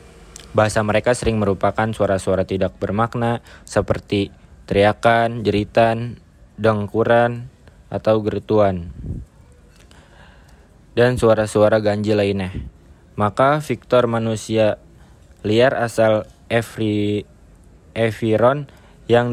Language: Indonesian